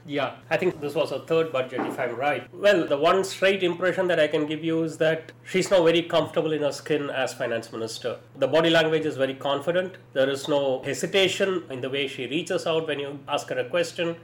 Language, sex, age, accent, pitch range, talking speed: English, male, 30-49, Indian, 145-175 Hz, 230 wpm